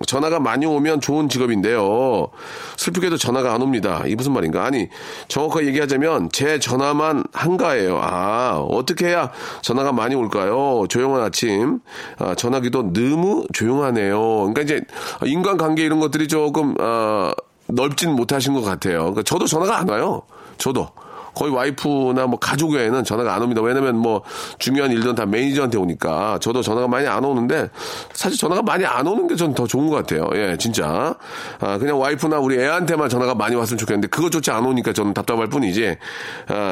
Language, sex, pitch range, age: Korean, male, 115-155 Hz, 40-59